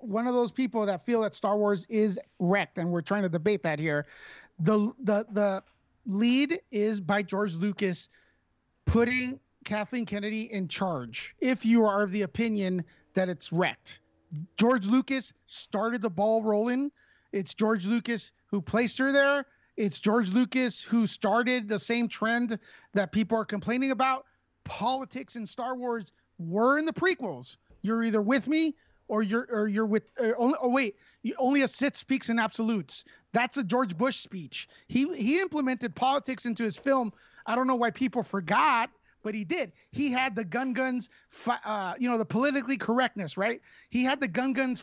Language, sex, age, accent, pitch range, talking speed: English, male, 30-49, American, 205-255 Hz, 175 wpm